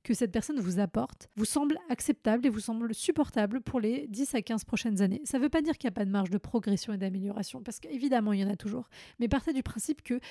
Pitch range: 205-245 Hz